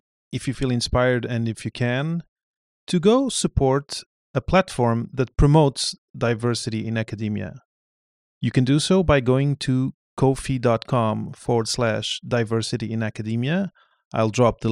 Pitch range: 115-155 Hz